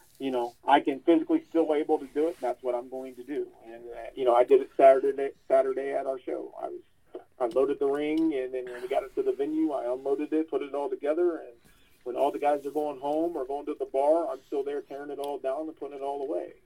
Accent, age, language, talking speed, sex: American, 40-59, English, 275 wpm, male